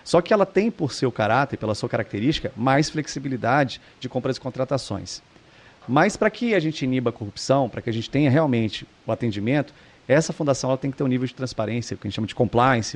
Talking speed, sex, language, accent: 220 wpm, male, English, Brazilian